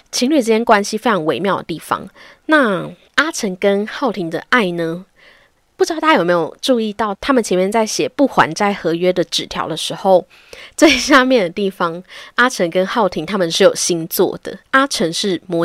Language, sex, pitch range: Chinese, female, 180-255 Hz